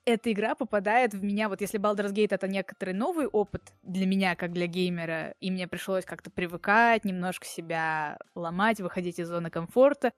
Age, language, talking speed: 20-39, Russian, 175 wpm